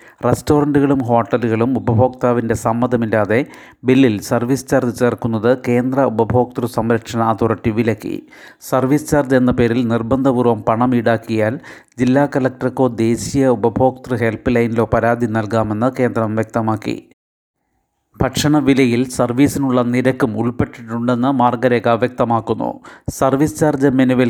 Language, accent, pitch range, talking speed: Malayalam, native, 115-130 Hz, 100 wpm